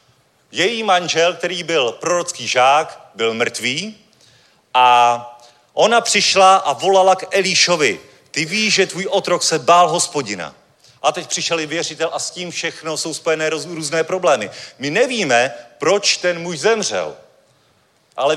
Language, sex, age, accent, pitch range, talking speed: Czech, male, 40-59, native, 155-185 Hz, 140 wpm